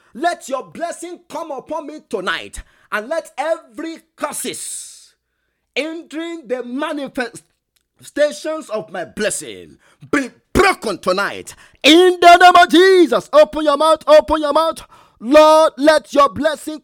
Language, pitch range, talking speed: English, 270-320 Hz, 125 wpm